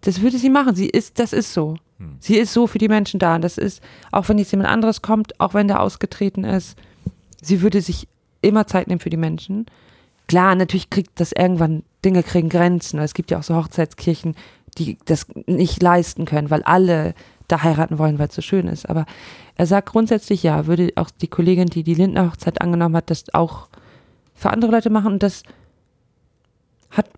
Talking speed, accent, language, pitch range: 205 wpm, German, German, 160-195 Hz